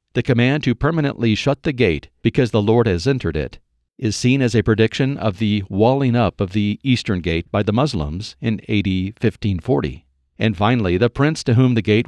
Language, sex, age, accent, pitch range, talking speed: English, male, 50-69, American, 100-125 Hz, 200 wpm